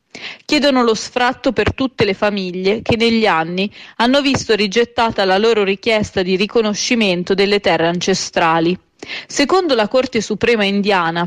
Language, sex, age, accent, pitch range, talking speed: Italian, female, 30-49, native, 195-245 Hz, 140 wpm